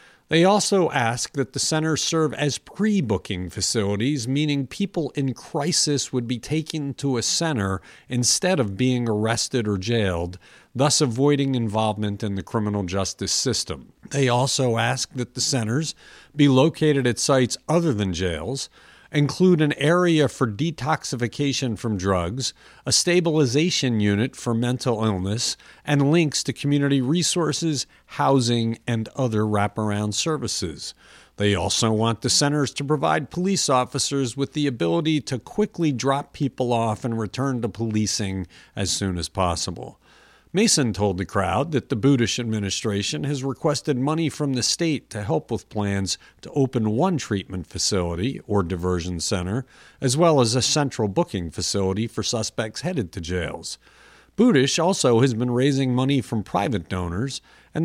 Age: 50-69